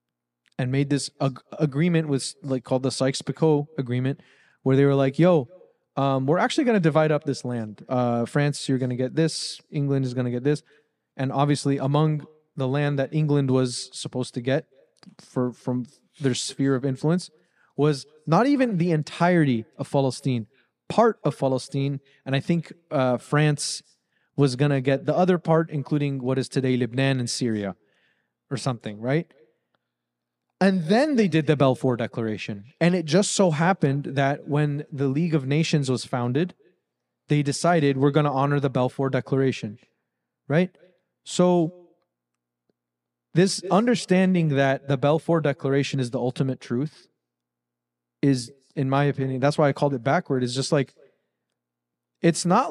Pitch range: 125-155 Hz